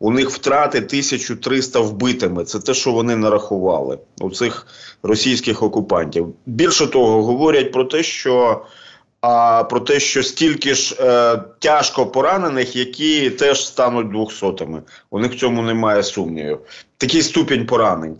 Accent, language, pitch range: native, Ukrainian, 115-140 Hz